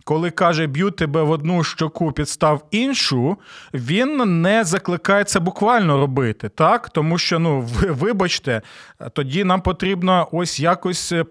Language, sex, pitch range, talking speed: Ukrainian, male, 160-215 Hz, 135 wpm